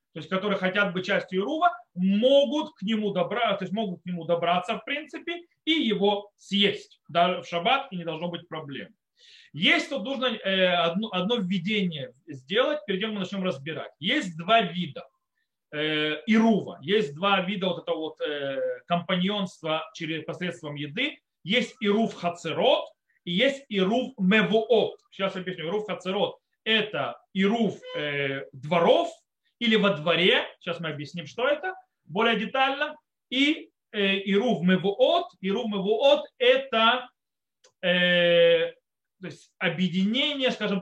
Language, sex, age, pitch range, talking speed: Russian, male, 30-49, 180-250 Hz, 140 wpm